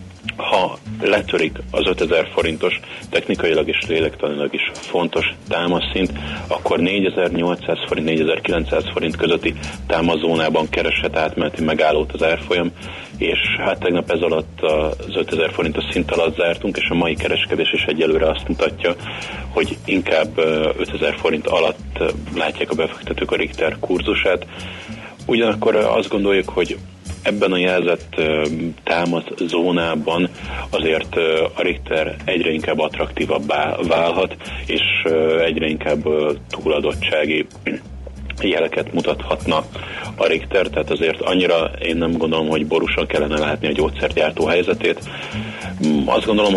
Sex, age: male, 30-49